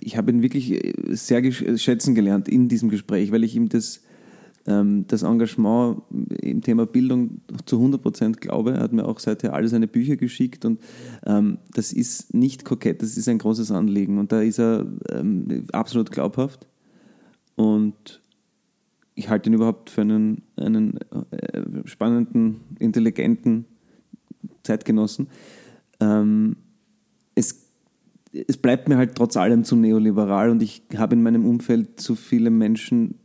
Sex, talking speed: male, 145 wpm